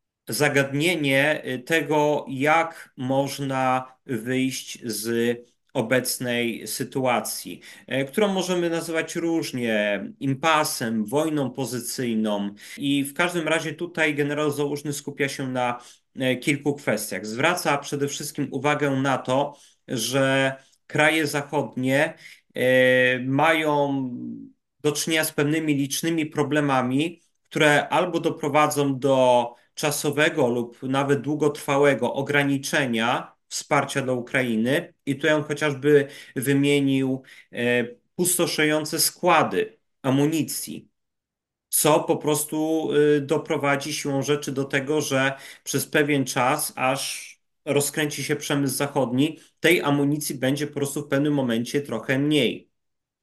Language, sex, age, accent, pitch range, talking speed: Polish, male, 30-49, native, 130-150 Hz, 100 wpm